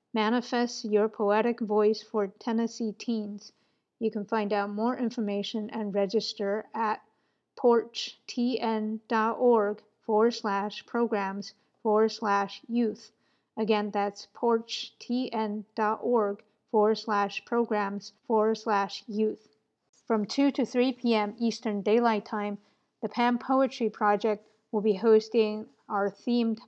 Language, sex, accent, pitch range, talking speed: English, female, American, 210-235 Hz, 110 wpm